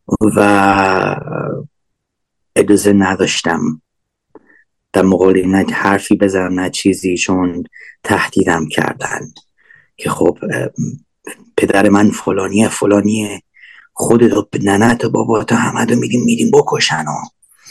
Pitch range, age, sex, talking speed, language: 95-110 Hz, 30-49, male, 95 wpm, Persian